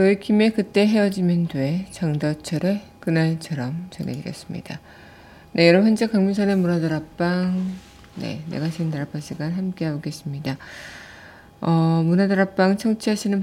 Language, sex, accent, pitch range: Korean, female, native, 160-195 Hz